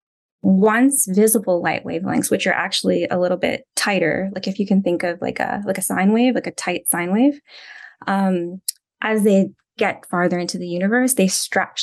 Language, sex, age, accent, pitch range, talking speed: English, female, 20-39, American, 180-230 Hz, 195 wpm